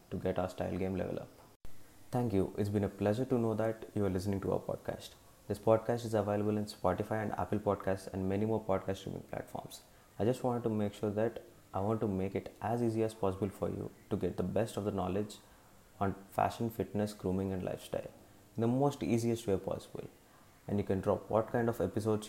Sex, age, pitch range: male, 20-39, 95-115 Hz